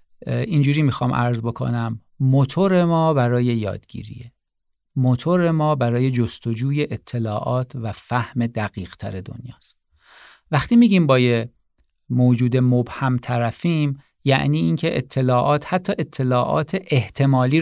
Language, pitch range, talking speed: Persian, 125-170 Hz, 100 wpm